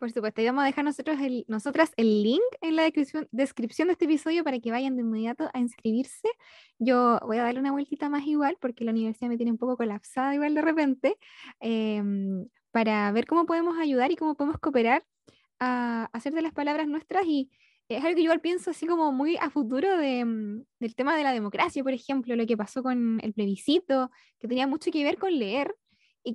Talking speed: 215 wpm